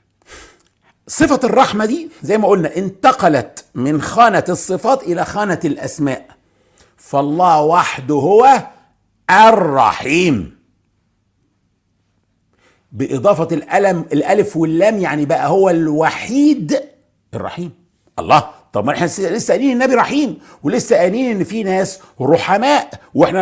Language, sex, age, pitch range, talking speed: English, male, 50-69, 120-200 Hz, 105 wpm